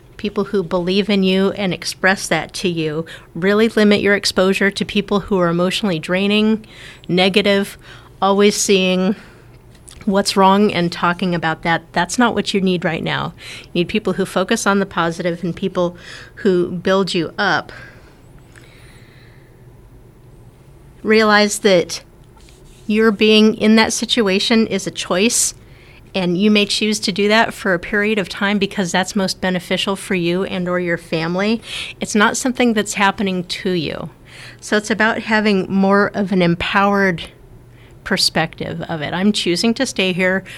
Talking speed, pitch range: 155 wpm, 170-200 Hz